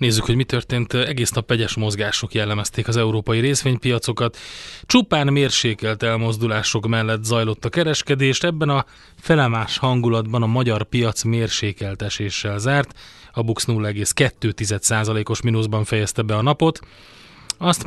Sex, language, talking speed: male, Hungarian, 130 wpm